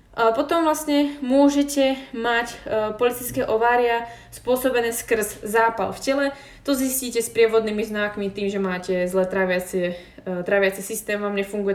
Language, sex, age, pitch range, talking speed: Slovak, female, 20-39, 190-225 Hz, 135 wpm